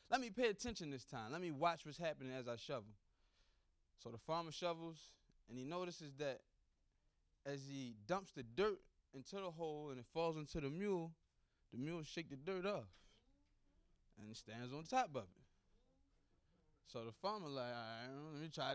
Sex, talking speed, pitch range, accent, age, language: male, 180 wpm, 115-185 Hz, American, 20-39, English